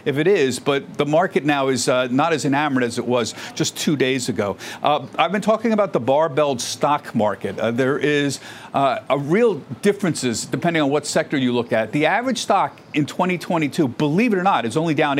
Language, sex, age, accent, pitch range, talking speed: English, male, 50-69, American, 130-175 Hz, 215 wpm